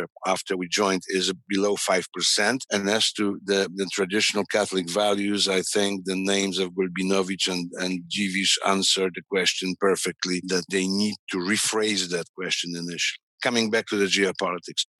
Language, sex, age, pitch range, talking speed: English, male, 50-69, 95-130 Hz, 160 wpm